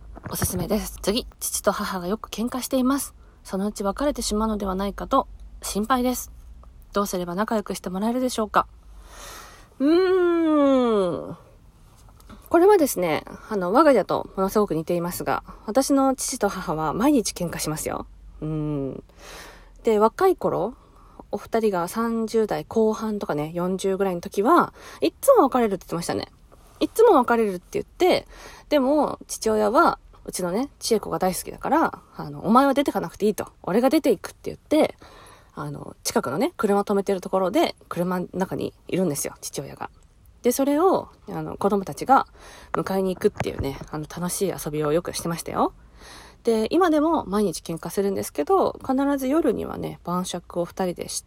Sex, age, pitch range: female, 20-39, 180-260 Hz